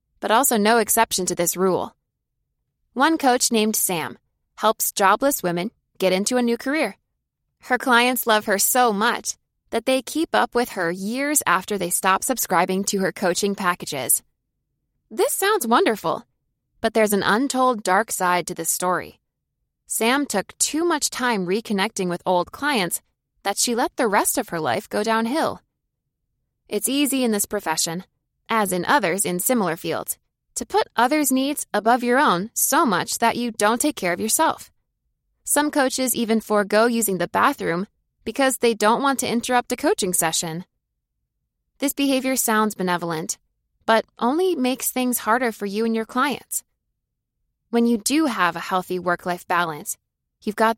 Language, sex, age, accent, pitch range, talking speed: English, female, 20-39, American, 190-255 Hz, 165 wpm